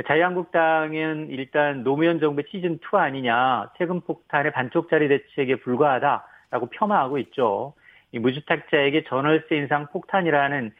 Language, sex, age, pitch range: Korean, male, 40-59, 140-180 Hz